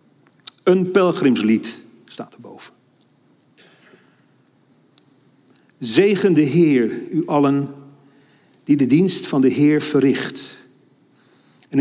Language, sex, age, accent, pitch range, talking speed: Dutch, male, 50-69, Dutch, 130-170 Hz, 85 wpm